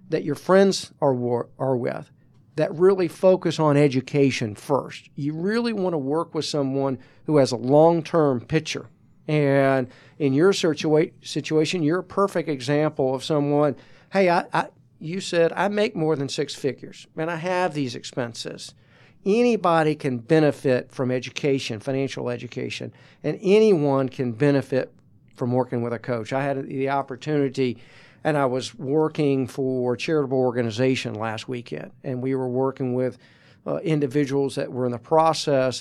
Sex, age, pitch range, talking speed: male, 50-69, 130-155 Hz, 155 wpm